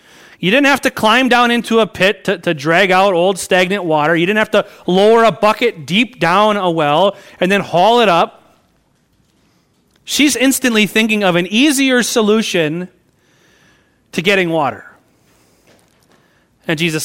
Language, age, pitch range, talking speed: English, 30-49, 170-235 Hz, 155 wpm